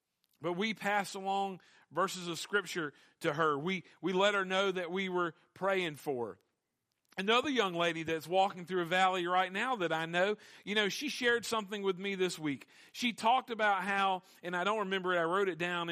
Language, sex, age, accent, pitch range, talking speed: English, male, 40-59, American, 165-205 Hz, 205 wpm